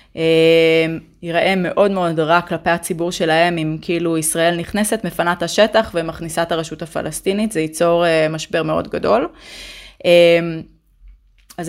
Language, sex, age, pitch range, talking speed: Hebrew, female, 20-39, 165-220 Hz, 130 wpm